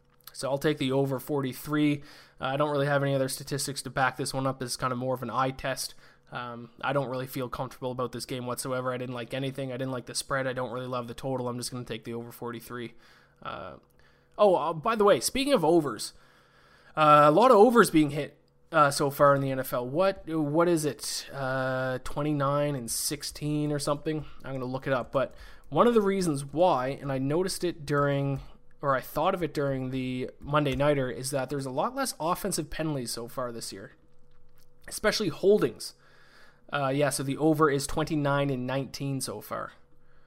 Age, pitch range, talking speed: 20-39, 125-150 Hz, 215 wpm